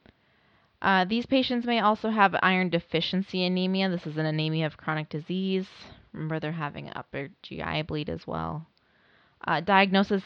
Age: 20-39